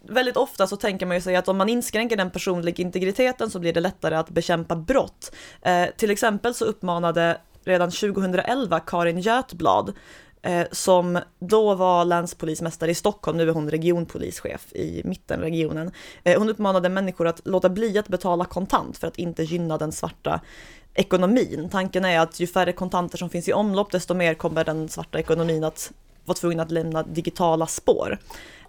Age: 20-39